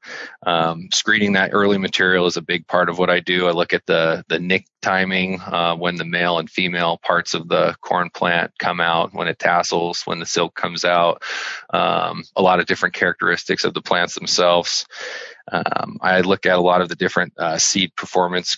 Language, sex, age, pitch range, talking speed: English, male, 30-49, 85-95 Hz, 205 wpm